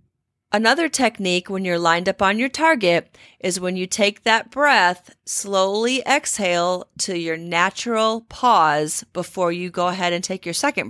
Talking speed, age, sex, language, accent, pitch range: 160 wpm, 40-59, female, English, American, 175-235 Hz